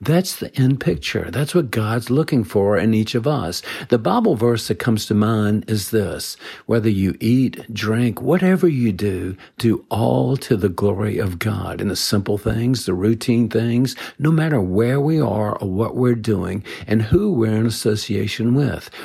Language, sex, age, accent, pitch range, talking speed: English, male, 50-69, American, 105-140 Hz, 185 wpm